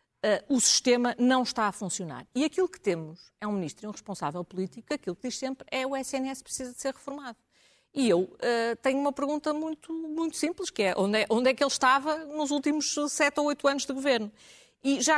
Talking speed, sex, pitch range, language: 215 wpm, female, 190-245 Hz, Portuguese